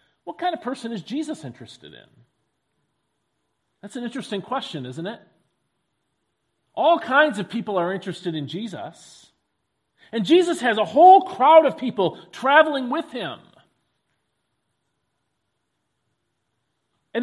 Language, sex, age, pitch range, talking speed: English, male, 40-59, 145-240 Hz, 120 wpm